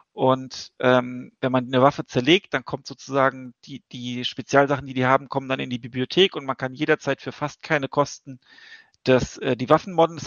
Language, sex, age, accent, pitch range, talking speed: German, male, 40-59, German, 135-160 Hz, 200 wpm